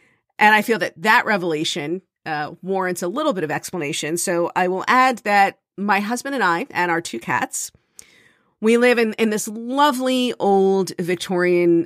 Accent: American